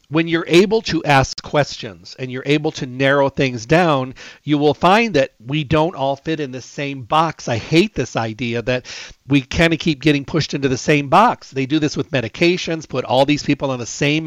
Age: 40-59